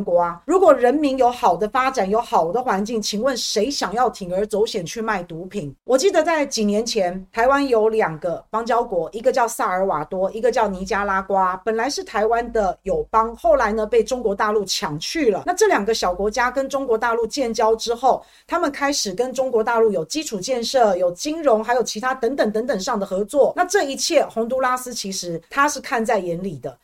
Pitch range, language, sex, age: 205-265 Hz, Chinese, female, 40-59